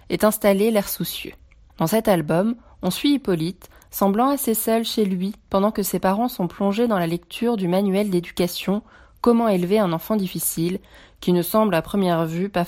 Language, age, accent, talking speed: French, 20-39, French, 185 wpm